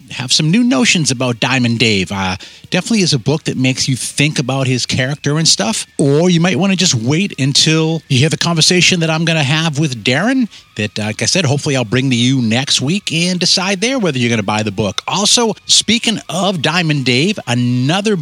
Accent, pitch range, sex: American, 120-170 Hz, male